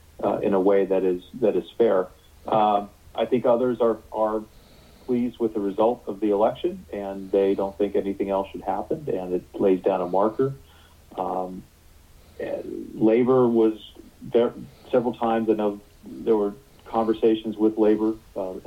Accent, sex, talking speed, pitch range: American, male, 160 wpm, 95-110 Hz